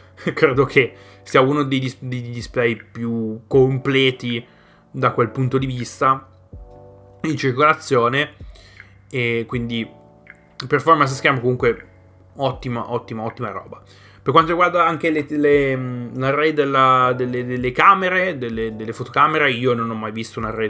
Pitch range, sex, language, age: 110-135 Hz, male, Italian, 20-39